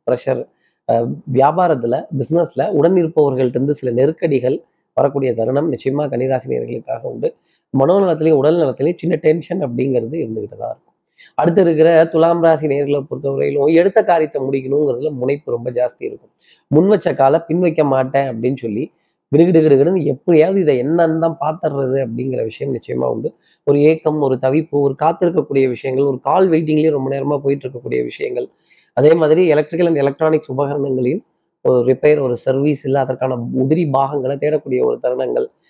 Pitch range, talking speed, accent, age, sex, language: 130-160 Hz, 140 wpm, native, 30-49, male, Tamil